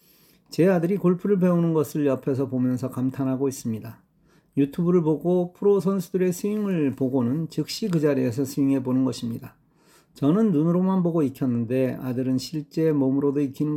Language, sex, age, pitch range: Korean, male, 40-59, 130-170 Hz